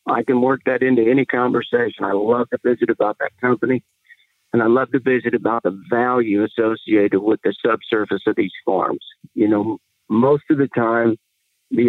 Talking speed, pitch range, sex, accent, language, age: 180 wpm, 115-135 Hz, male, American, English, 50-69